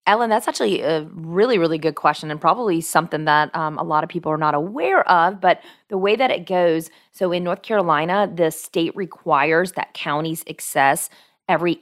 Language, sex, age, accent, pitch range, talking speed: English, female, 30-49, American, 150-185 Hz, 195 wpm